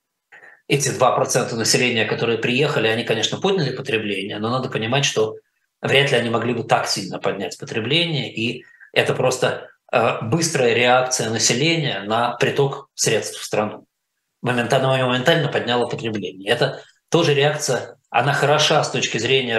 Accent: native